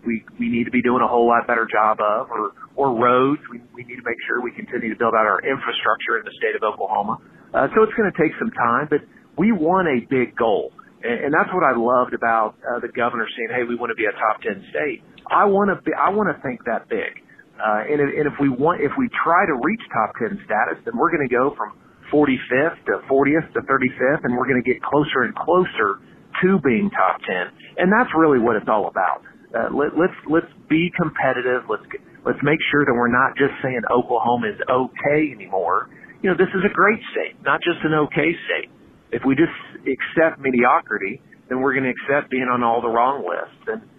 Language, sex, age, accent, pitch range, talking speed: English, male, 40-59, American, 120-160 Hz, 225 wpm